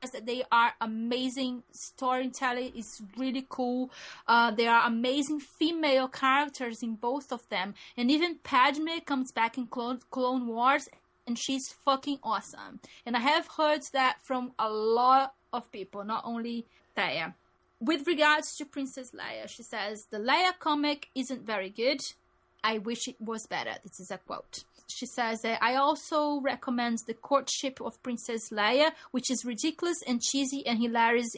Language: English